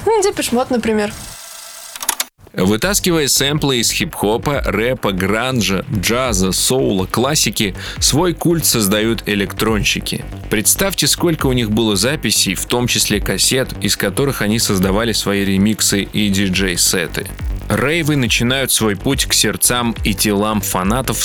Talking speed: 125 wpm